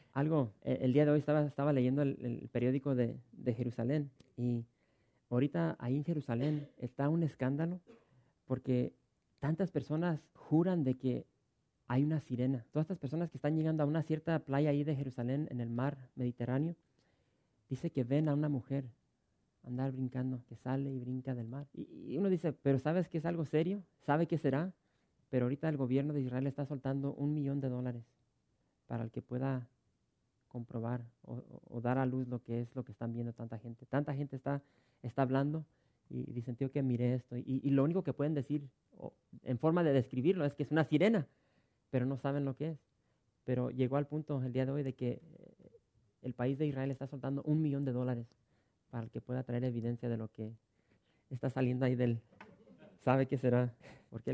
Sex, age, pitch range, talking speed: male, 40-59, 125-150 Hz, 200 wpm